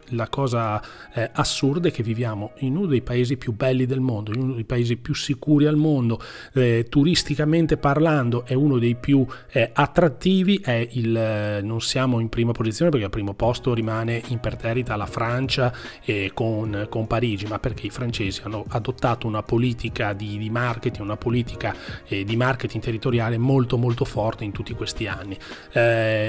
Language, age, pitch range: Italian, 30-49, 115-140 Hz